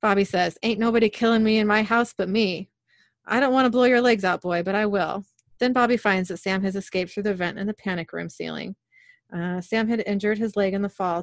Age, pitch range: 30-49, 180-220 Hz